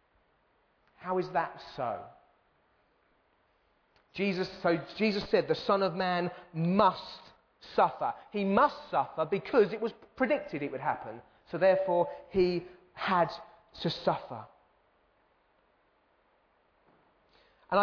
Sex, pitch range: male, 180-245 Hz